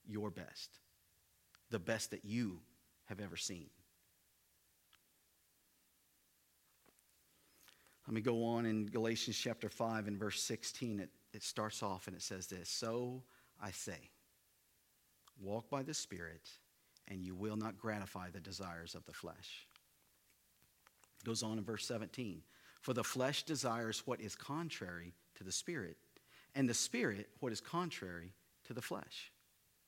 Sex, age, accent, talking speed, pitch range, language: male, 50-69, American, 140 wpm, 100-135 Hz, English